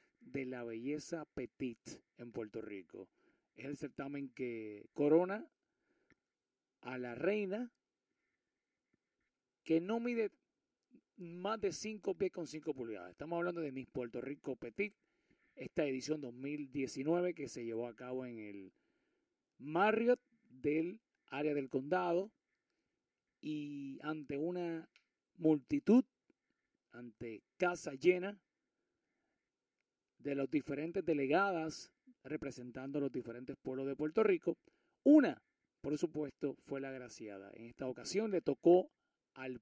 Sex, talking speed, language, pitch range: male, 115 wpm, English, 140-210 Hz